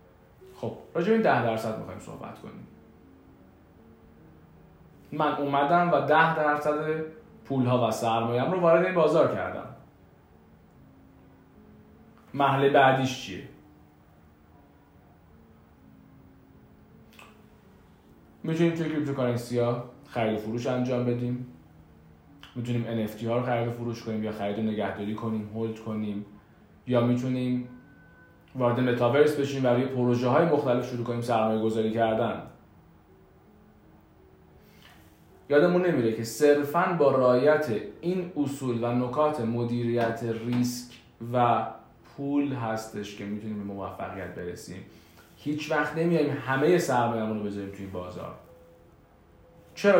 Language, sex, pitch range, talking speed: Persian, male, 105-145 Hz, 110 wpm